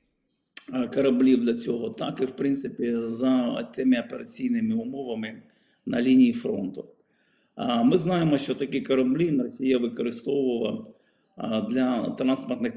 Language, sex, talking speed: Ukrainian, male, 110 wpm